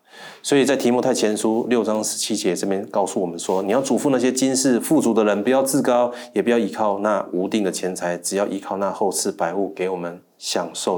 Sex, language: male, Chinese